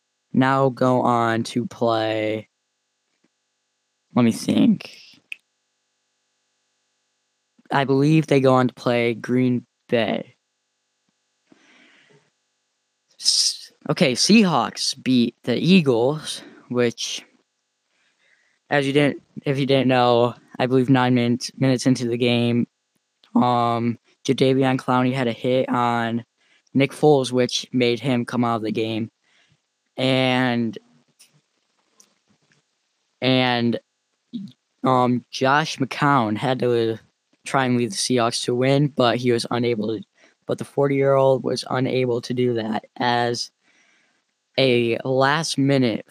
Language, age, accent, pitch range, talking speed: English, 10-29, American, 115-135 Hz, 110 wpm